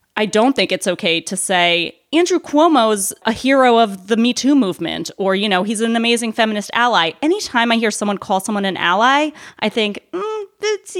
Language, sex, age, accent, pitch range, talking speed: English, female, 20-39, American, 180-250 Hz, 190 wpm